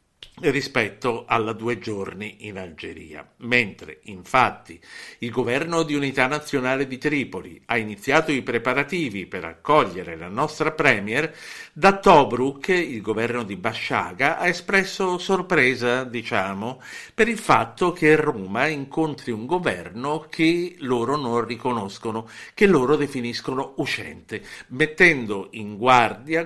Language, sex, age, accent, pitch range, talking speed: Italian, male, 60-79, native, 110-155 Hz, 120 wpm